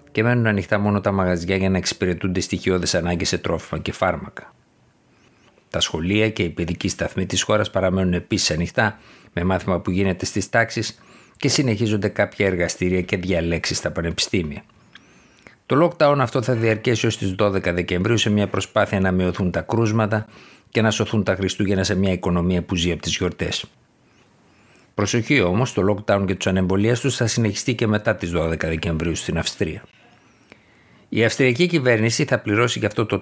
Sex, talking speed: male, 170 wpm